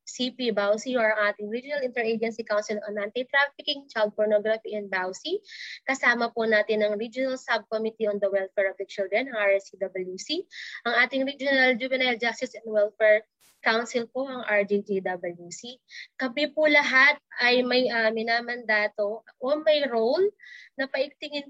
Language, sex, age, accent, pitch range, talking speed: Filipino, female, 20-39, native, 210-260 Hz, 135 wpm